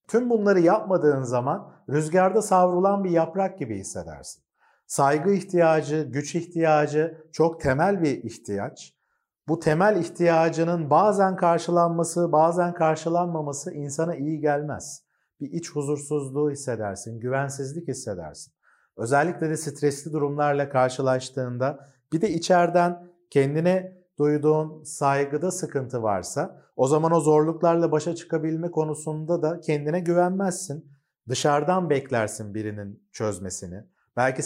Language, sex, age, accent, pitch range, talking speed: Turkish, male, 50-69, native, 135-170 Hz, 110 wpm